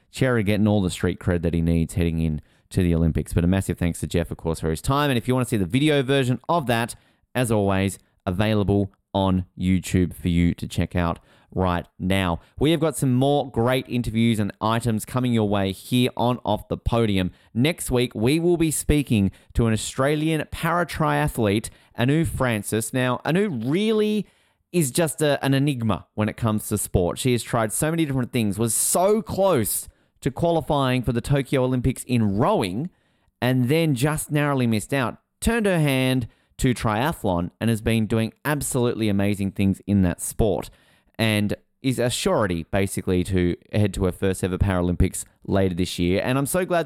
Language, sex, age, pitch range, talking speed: English, male, 30-49, 95-130 Hz, 190 wpm